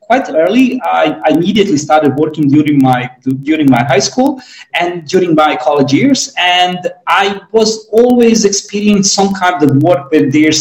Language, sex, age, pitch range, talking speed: English, male, 30-49, 145-220 Hz, 160 wpm